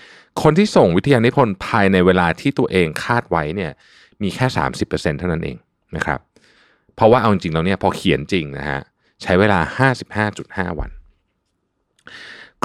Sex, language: male, Thai